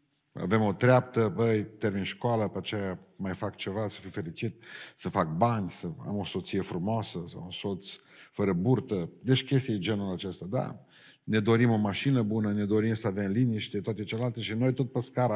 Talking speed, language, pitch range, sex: 200 wpm, Romanian, 100-130 Hz, male